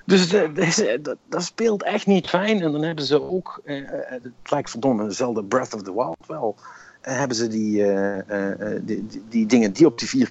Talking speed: 205 wpm